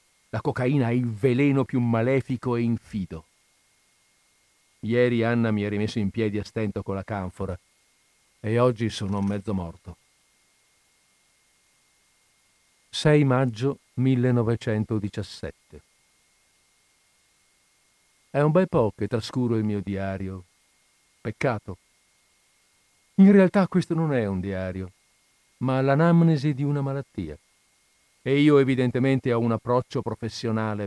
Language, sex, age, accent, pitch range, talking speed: Italian, male, 50-69, native, 100-140 Hz, 115 wpm